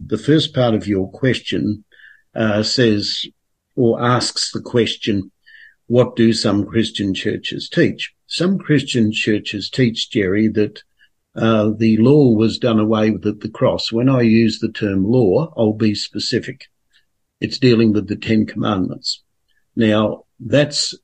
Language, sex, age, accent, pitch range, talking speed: English, male, 60-79, Australian, 110-125 Hz, 145 wpm